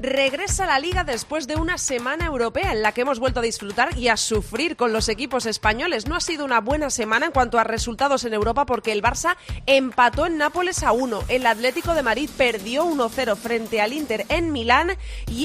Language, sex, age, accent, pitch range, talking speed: Spanish, female, 30-49, Spanish, 230-290 Hz, 215 wpm